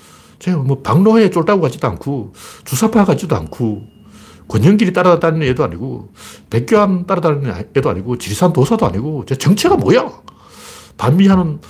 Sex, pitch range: male, 135-190 Hz